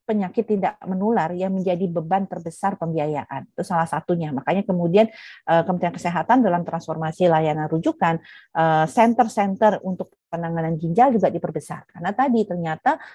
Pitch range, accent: 160-215 Hz, native